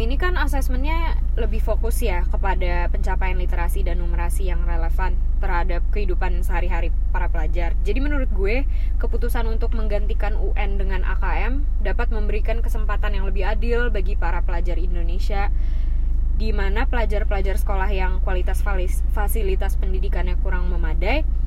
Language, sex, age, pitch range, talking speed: Indonesian, female, 20-39, 75-85 Hz, 130 wpm